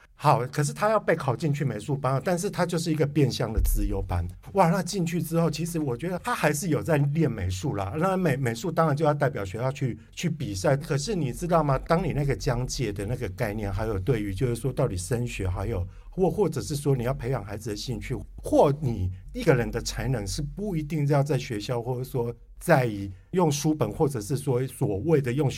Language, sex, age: Chinese, male, 50-69